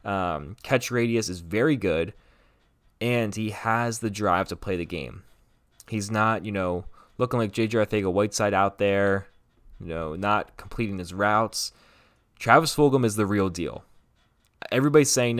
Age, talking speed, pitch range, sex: 20-39, 155 wpm, 95-115 Hz, male